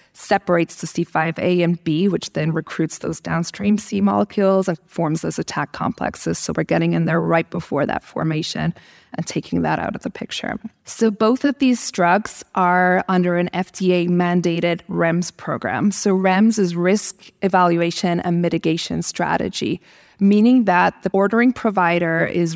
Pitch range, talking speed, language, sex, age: 165-190 Hz, 155 wpm, English, female, 20-39